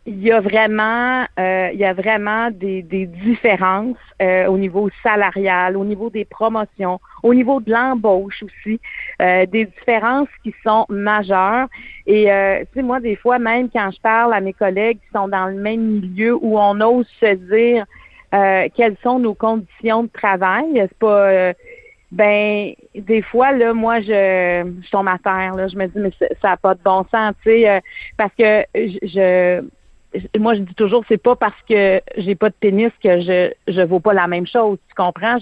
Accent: Canadian